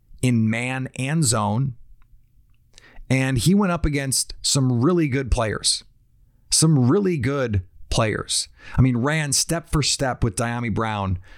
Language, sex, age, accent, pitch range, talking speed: English, male, 30-49, American, 110-140 Hz, 135 wpm